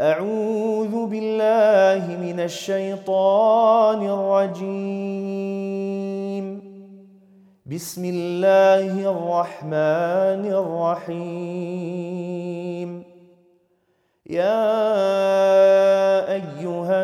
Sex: male